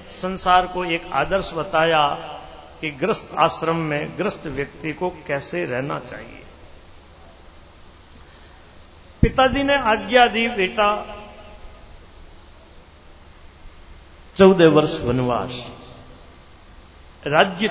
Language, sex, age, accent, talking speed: Hindi, male, 50-69, native, 80 wpm